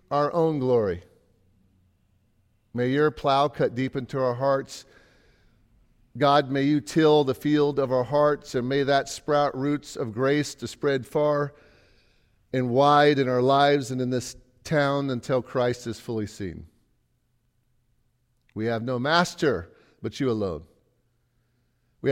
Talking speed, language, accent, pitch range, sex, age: 140 wpm, English, American, 120-150 Hz, male, 50-69